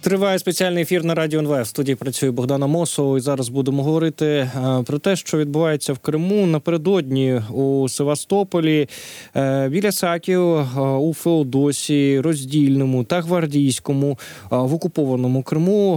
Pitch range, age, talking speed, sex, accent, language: 125-160 Hz, 20-39, 120 wpm, male, native, Ukrainian